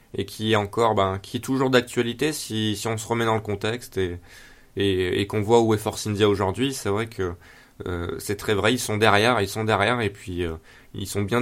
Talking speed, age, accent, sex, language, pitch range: 245 wpm, 20-39, French, male, French, 105-125 Hz